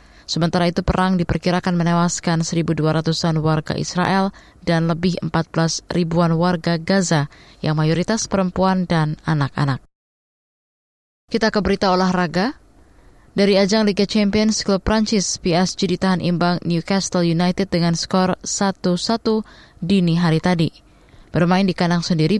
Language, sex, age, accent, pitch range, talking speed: Indonesian, female, 20-39, native, 165-190 Hz, 120 wpm